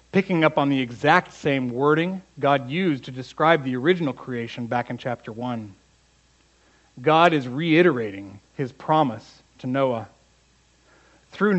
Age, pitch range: 40-59, 115-155 Hz